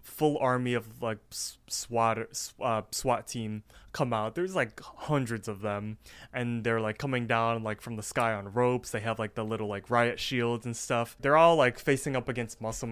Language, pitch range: English, 115-135 Hz